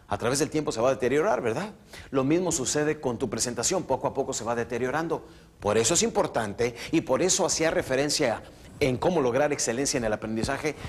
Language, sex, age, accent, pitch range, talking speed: Spanish, male, 40-59, Mexican, 125-190 Hz, 205 wpm